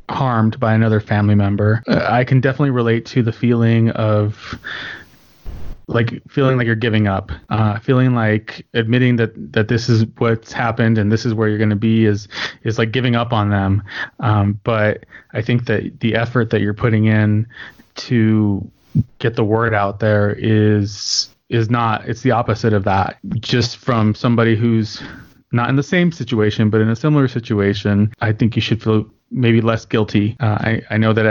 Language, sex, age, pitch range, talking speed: English, male, 20-39, 105-120 Hz, 185 wpm